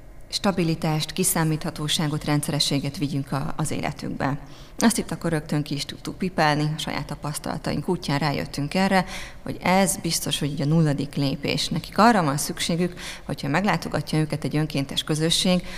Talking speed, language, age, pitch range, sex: 145 wpm, Hungarian, 30-49, 150-175 Hz, female